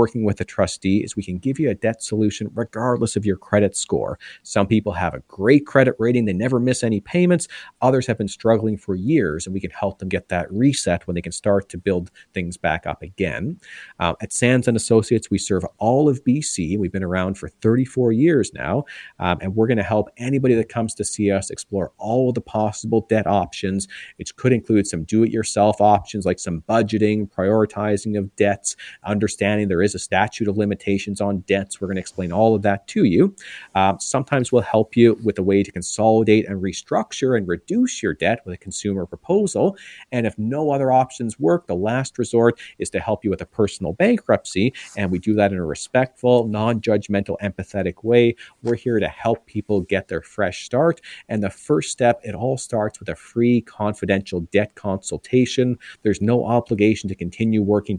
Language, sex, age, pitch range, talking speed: English, male, 40-59, 100-120 Hz, 200 wpm